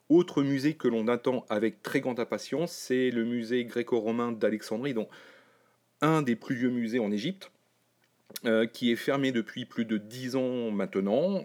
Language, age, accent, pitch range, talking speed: French, 40-59, French, 110-135 Hz, 170 wpm